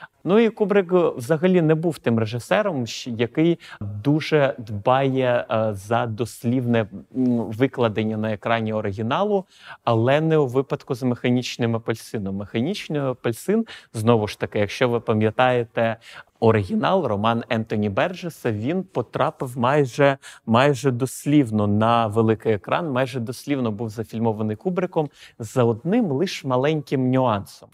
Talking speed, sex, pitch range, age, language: 115 wpm, male, 115-150 Hz, 30-49, Ukrainian